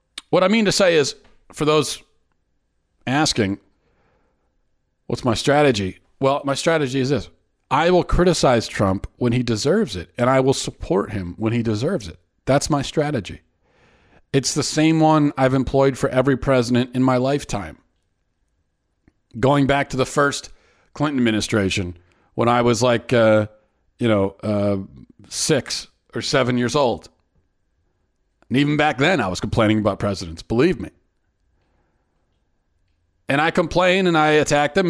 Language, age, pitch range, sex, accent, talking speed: English, 40-59, 100-145 Hz, male, American, 150 wpm